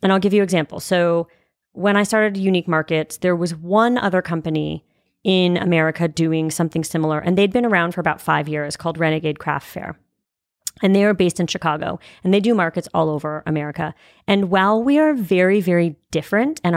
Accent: American